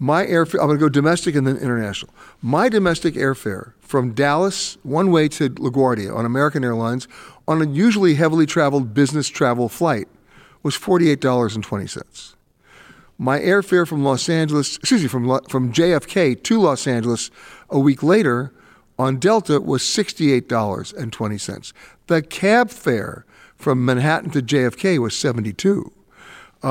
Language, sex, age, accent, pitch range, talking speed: English, male, 60-79, American, 130-170 Hz, 135 wpm